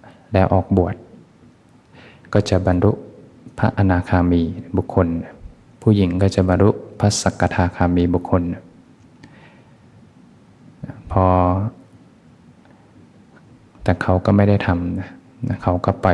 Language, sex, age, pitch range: Thai, male, 20-39, 90-100 Hz